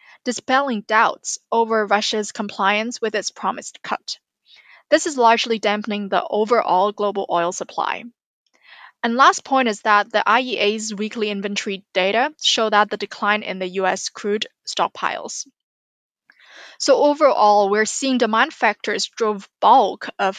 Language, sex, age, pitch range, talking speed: English, female, 10-29, 205-240 Hz, 135 wpm